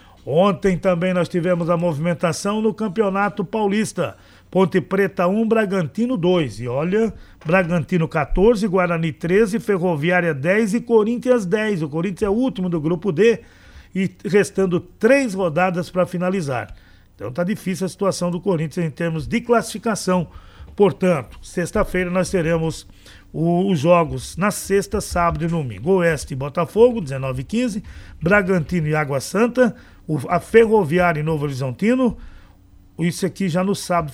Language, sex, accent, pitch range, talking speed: Portuguese, male, Brazilian, 160-205 Hz, 140 wpm